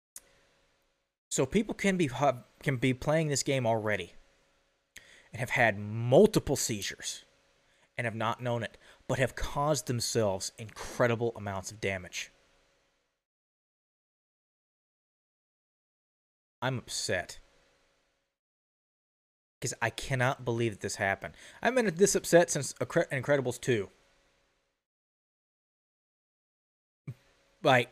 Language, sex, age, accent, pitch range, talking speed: English, male, 30-49, American, 110-175 Hz, 95 wpm